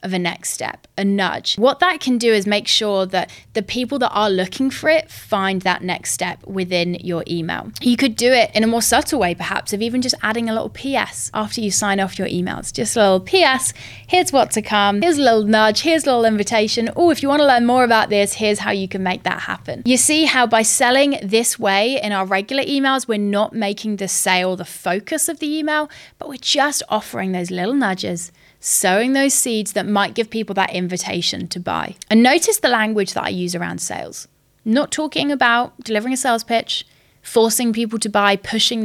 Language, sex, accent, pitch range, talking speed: English, female, British, 195-275 Hz, 220 wpm